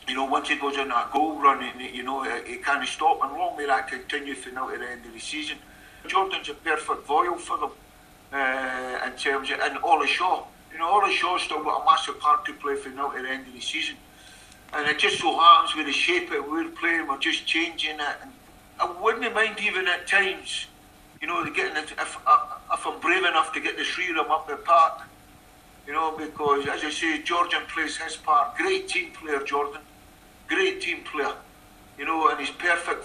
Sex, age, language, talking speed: male, 50-69, English, 220 wpm